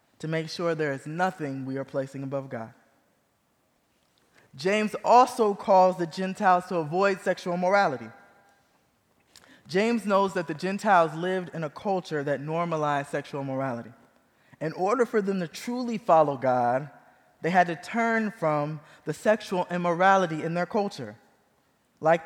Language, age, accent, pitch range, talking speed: English, 20-39, American, 150-190 Hz, 145 wpm